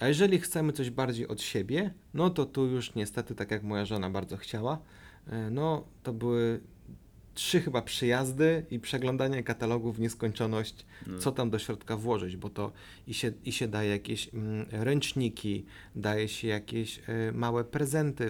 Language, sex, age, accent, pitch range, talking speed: Polish, male, 30-49, native, 105-140 Hz, 155 wpm